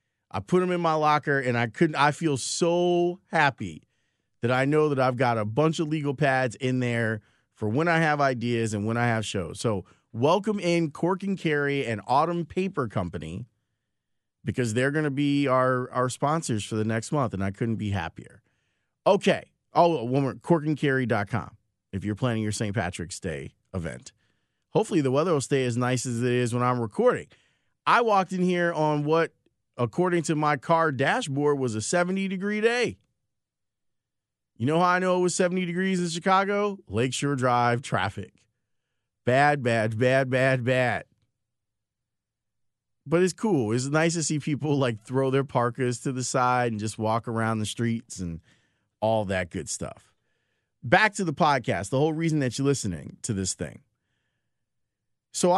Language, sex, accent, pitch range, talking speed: English, male, American, 115-155 Hz, 175 wpm